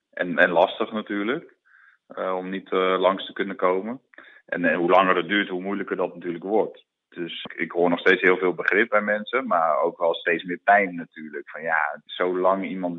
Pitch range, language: 90-100 Hz, Dutch